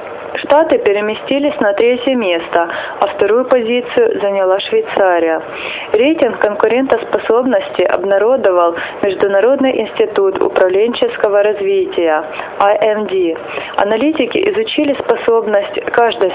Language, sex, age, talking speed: Russian, female, 30-49, 85 wpm